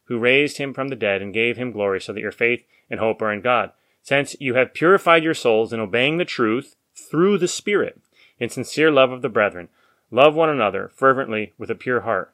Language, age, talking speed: English, 30-49, 225 wpm